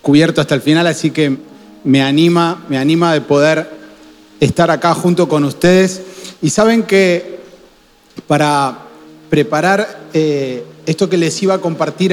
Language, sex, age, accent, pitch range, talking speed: Spanish, male, 40-59, Argentinian, 150-190 Hz, 140 wpm